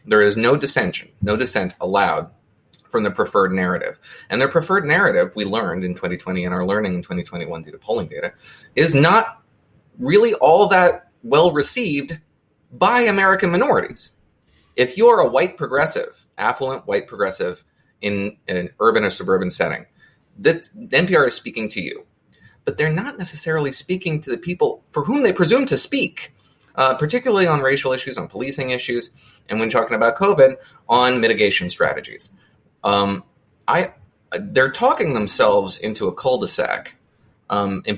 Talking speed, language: 160 wpm, English